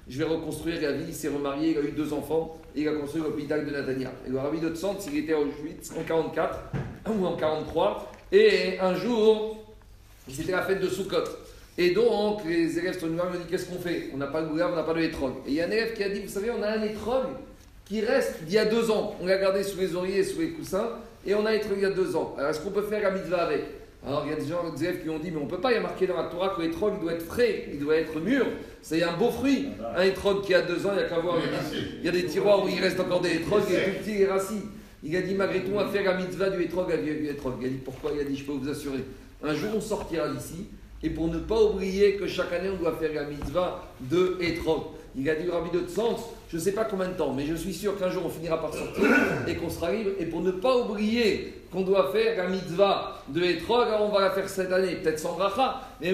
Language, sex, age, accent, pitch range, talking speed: French, male, 40-59, French, 155-200 Hz, 295 wpm